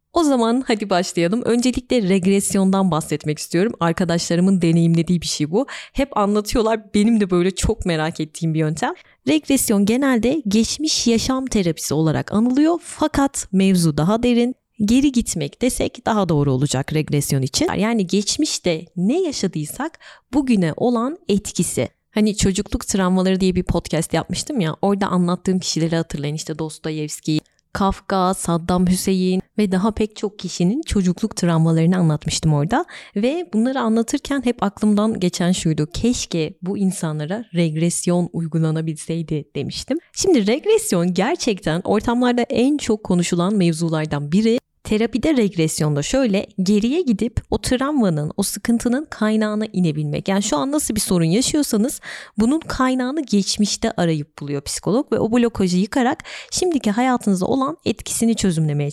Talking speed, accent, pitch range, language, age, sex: 130 wpm, native, 170-240 Hz, Turkish, 30-49, female